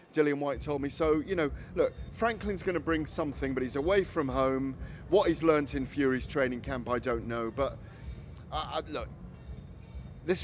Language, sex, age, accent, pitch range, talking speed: English, male, 30-49, British, 120-150 Hz, 185 wpm